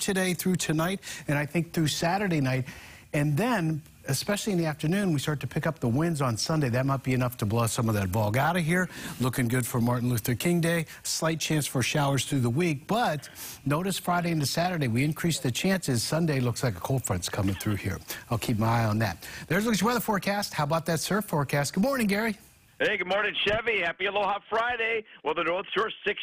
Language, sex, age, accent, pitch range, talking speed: English, male, 50-69, American, 140-190 Hz, 230 wpm